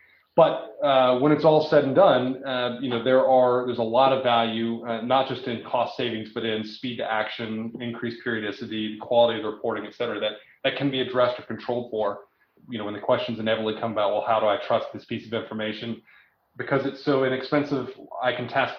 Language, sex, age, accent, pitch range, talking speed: English, male, 30-49, American, 115-135 Hz, 220 wpm